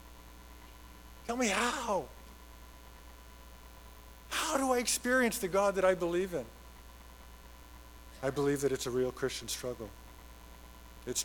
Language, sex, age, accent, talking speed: English, male, 50-69, American, 115 wpm